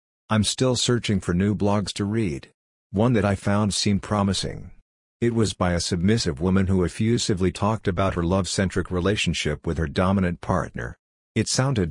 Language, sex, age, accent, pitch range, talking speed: English, male, 50-69, American, 90-105 Hz, 165 wpm